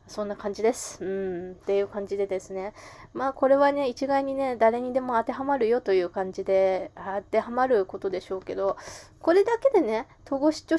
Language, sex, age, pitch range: Japanese, female, 20-39, 195-270 Hz